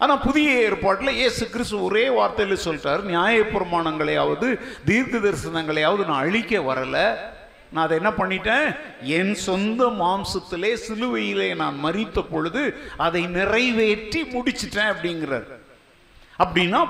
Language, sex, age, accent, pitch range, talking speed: Tamil, male, 50-69, native, 175-230 Hz, 55 wpm